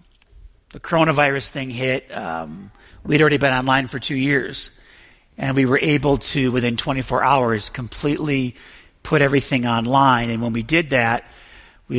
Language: English